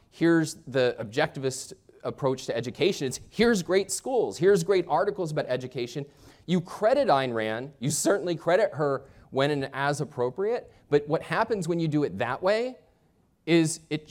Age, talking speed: 30-49, 160 wpm